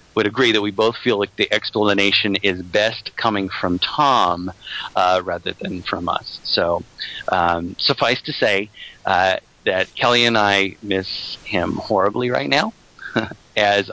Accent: American